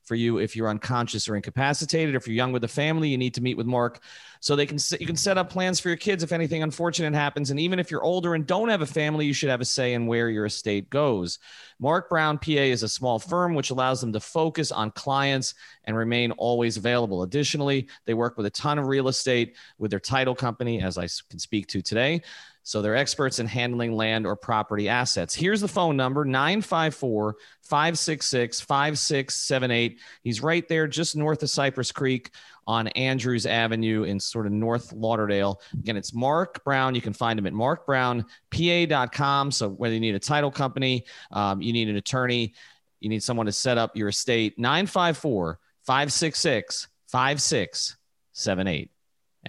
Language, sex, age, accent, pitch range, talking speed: English, male, 30-49, American, 115-150 Hz, 185 wpm